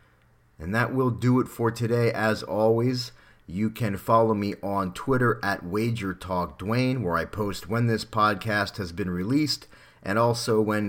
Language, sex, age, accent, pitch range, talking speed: English, male, 30-49, American, 95-115 Hz, 160 wpm